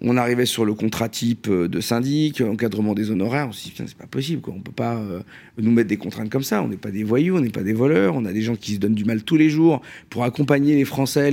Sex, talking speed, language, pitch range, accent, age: male, 295 wpm, French, 110-140 Hz, French, 50-69